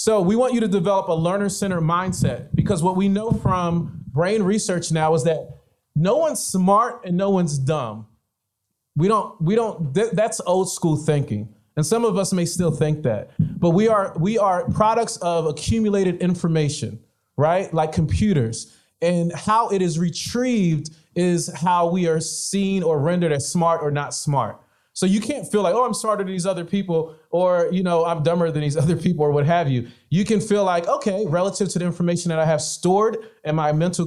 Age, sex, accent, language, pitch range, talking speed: 30-49, male, American, English, 150-190 Hz, 200 wpm